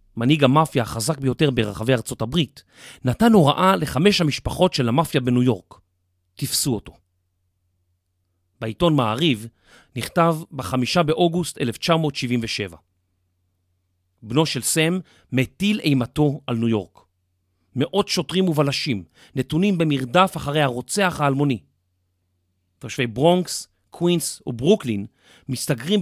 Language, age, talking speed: Hebrew, 40-59, 100 wpm